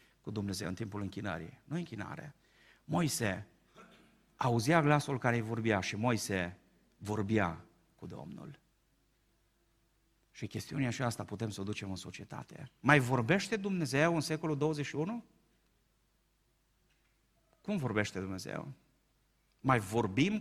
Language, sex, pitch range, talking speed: Romanian, male, 125-170 Hz, 115 wpm